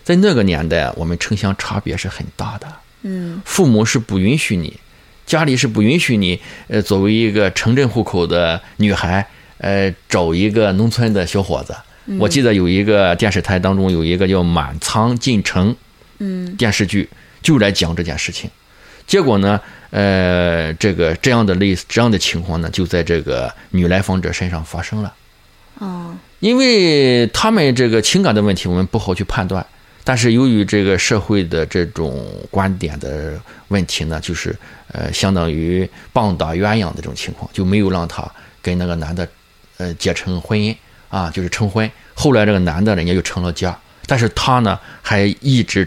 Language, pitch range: Chinese, 90-115 Hz